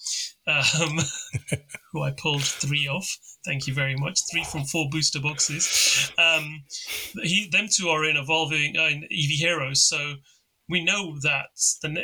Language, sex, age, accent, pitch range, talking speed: English, male, 30-49, British, 145-175 Hz, 155 wpm